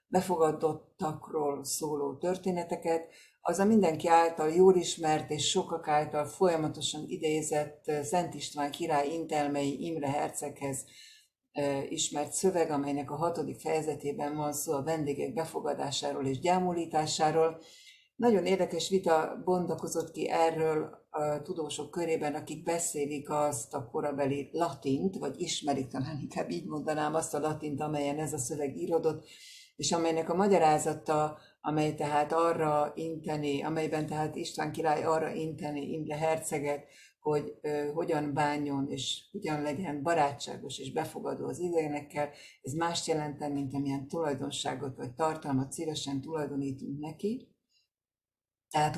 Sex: female